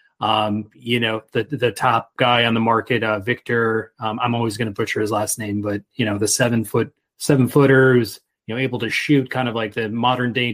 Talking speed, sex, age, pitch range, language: 230 wpm, male, 30-49, 110-140 Hz, English